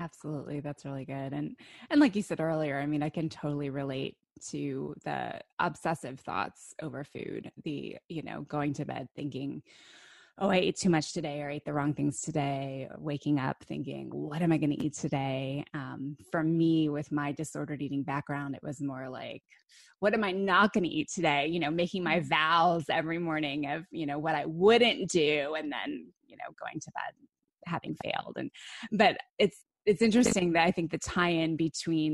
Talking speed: 200 wpm